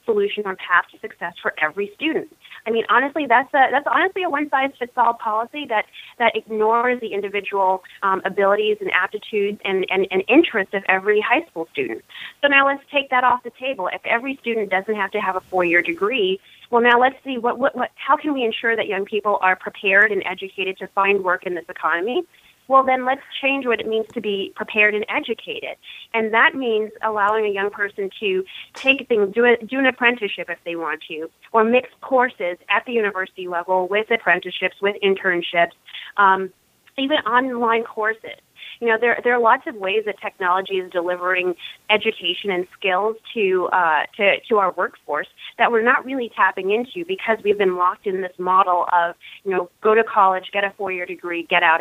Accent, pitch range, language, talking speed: American, 190-245 Hz, English, 195 wpm